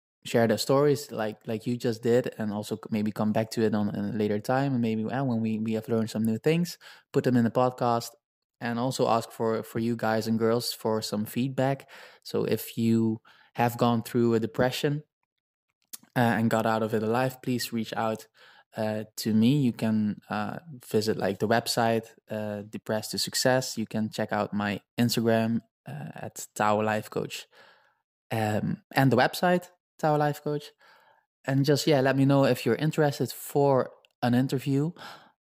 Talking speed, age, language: 185 wpm, 20-39, English